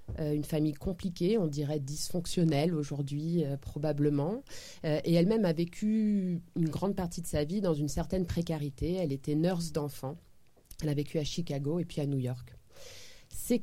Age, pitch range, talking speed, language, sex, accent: 30-49, 145-190 Hz, 175 wpm, French, female, French